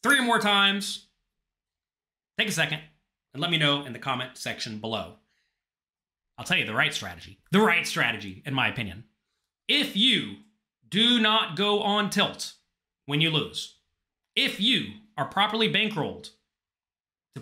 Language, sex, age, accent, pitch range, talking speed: English, male, 30-49, American, 130-195 Hz, 150 wpm